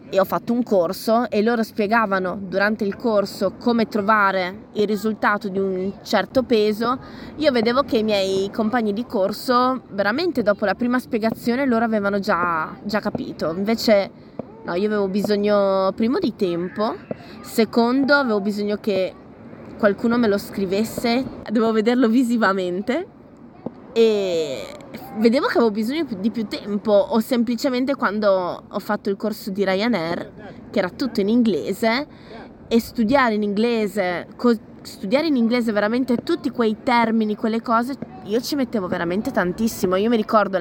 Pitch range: 205-240 Hz